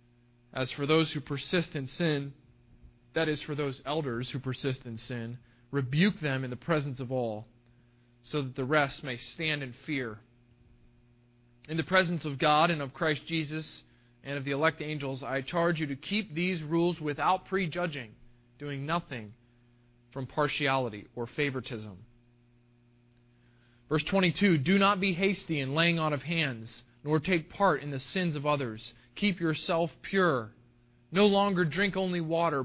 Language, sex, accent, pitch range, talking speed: English, male, American, 120-160 Hz, 160 wpm